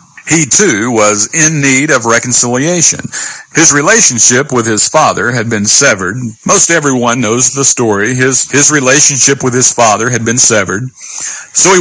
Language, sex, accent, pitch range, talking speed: English, male, American, 125-175 Hz, 160 wpm